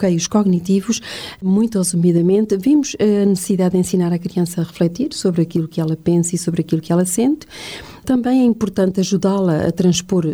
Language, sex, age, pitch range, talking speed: Portuguese, female, 40-59, 170-210 Hz, 180 wpm